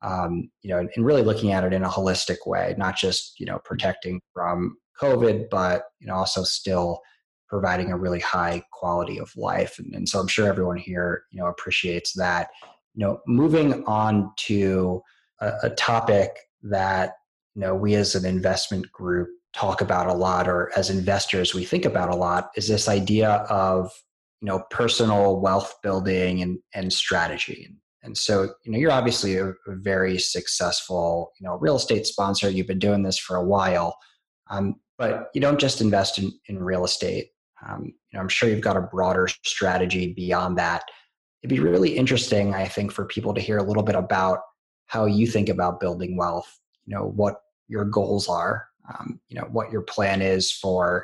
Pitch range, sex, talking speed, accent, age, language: 90-105 Hz, male, 185 wpm, American, 20-39, English